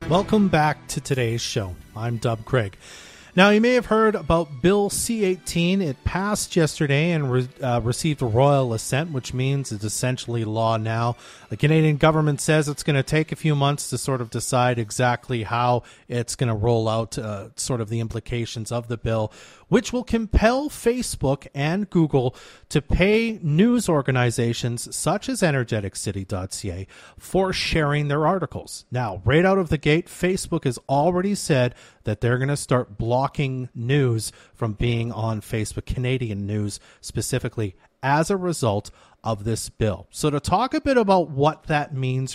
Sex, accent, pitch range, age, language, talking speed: male, American, 115-155 Hz, 40-59, English, 165 wpm